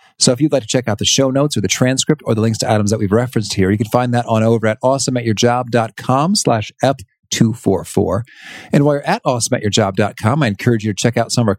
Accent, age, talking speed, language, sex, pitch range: American, 40-59, 245 wpm, English, male, 100-140 Hz